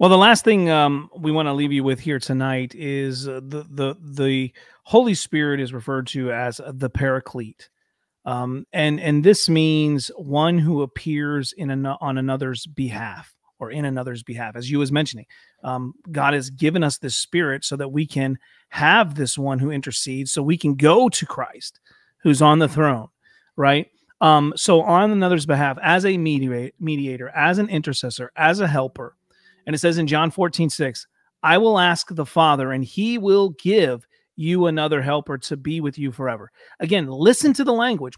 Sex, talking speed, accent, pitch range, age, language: male, 185 wpm, American, 135-180 Hz, 30-49, English